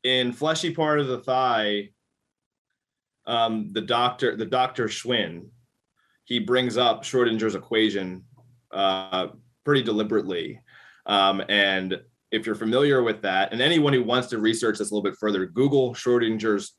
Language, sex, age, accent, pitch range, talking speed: English, male, 20-39, American, 100-125 Hz, 145 wpm